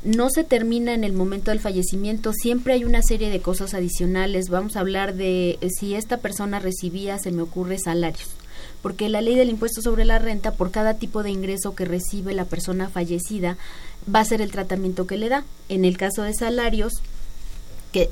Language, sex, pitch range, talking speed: Spanish, female, 180-220 Hz, 200 wpm